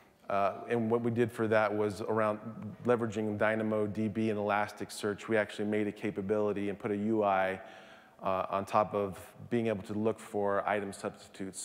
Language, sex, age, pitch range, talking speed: English, male, 30-49, 100-110 Hz, 170 wpm